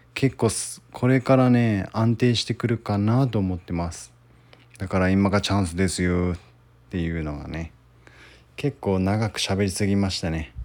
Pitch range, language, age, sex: 95-125 Hz, Japanese, 20-39, male